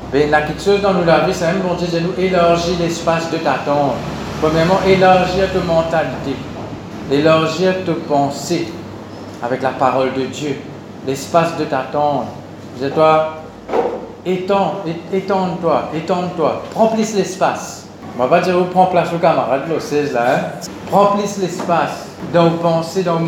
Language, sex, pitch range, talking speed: Italian, male, 155-180 Hz, 150 wpm